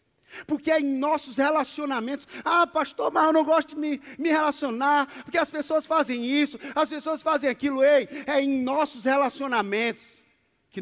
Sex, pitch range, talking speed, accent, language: male, 155-250 Hz, 165 wpm, Brazilian, Portuguese